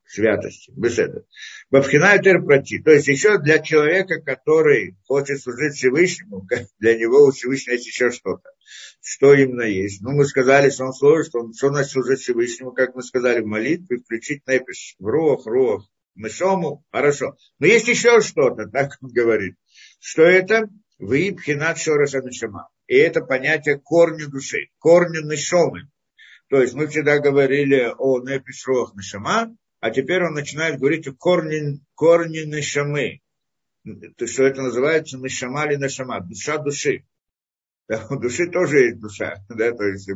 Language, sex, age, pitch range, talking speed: Russian, male, 50-69, 125-170 Hz, 145 wpm